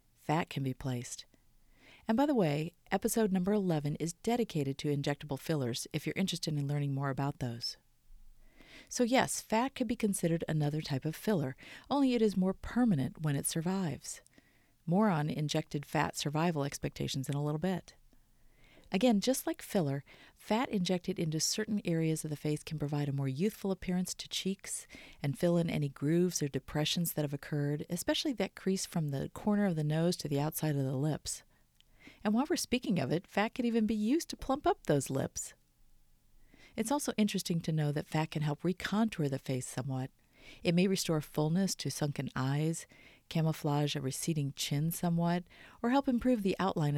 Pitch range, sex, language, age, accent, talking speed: 145-195 Hz, female, English, 40-59, American, 185 wpm